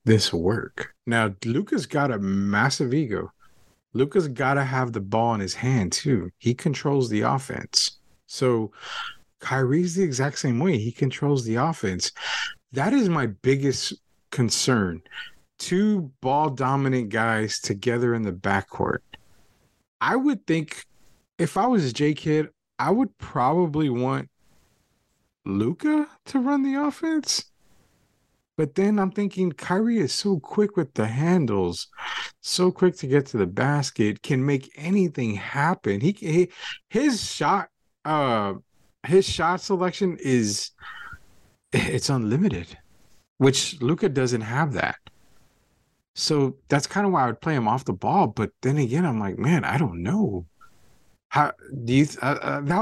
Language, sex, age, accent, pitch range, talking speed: English, male, 30-49, American, 115-170 Hz, 145 wpm